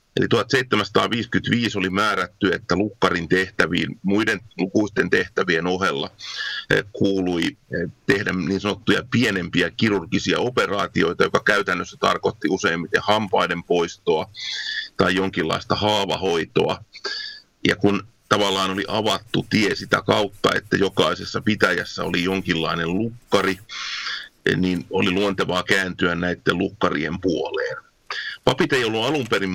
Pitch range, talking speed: 90-110 Hz, 110 wpm